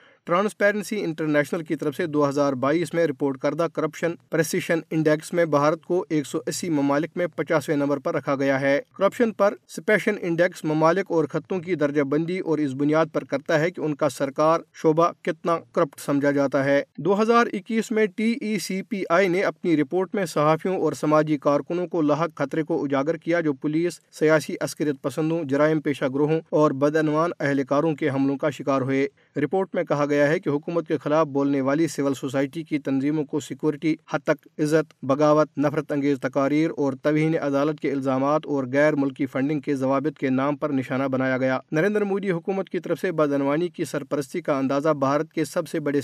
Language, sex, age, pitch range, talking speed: Urdu, male, 40-59, 145-170 Hz, 195 wpm